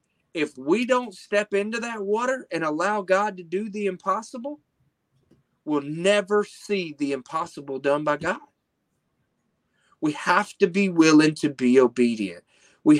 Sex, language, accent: male, English, American